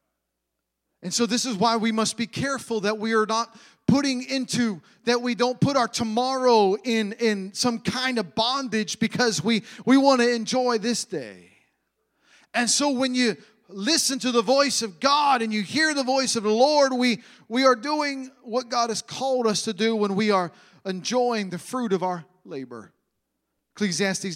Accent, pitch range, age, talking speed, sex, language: American, 170-235 Hz, 40-59, 180 wpm, male, English